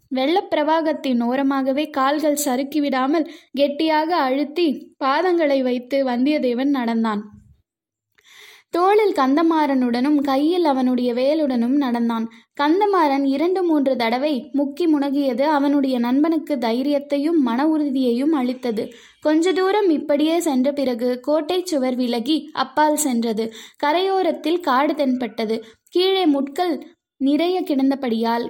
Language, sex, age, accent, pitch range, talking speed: Tamil, female, 20-39, native, 250-305 Hz, 95 wpm